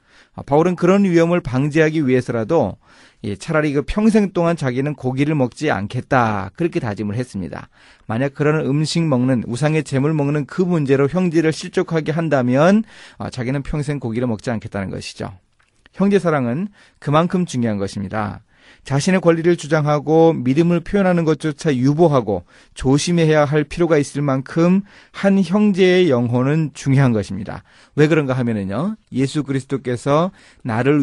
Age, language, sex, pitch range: 30-49, Korean, male, 115-160 Hz